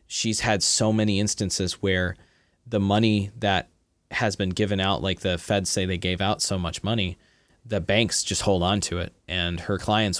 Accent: American